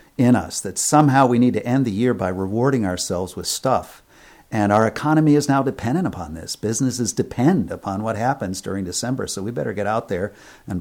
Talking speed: 205 wpm